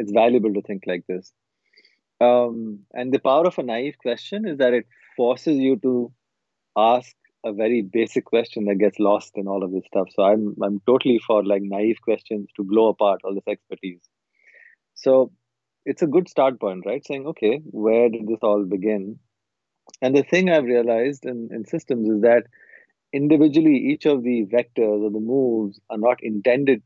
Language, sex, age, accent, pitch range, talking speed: English, male, 30-49, Indian, 105-130 Hz, 185 wpm